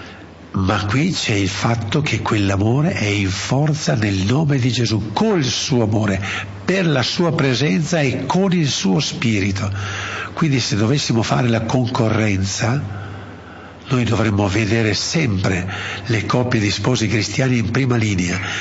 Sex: male